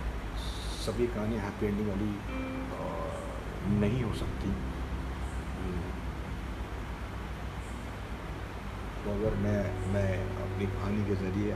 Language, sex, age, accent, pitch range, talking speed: Hindi, male, 40-59, native, 90-100 Hz, 90 wpm